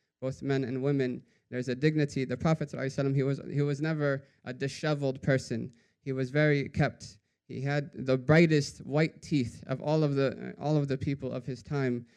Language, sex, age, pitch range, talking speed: English, male, 20-39, 130-155 Hz, 195 wpm